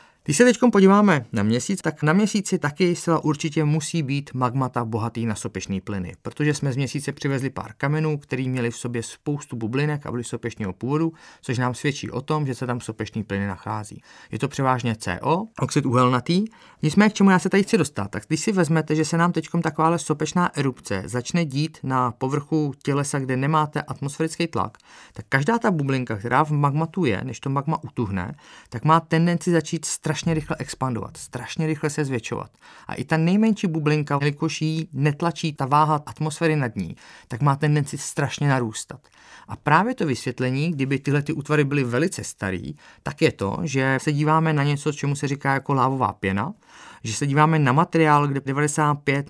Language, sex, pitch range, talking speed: Czech, male, 125-160 Hz, 185 wpm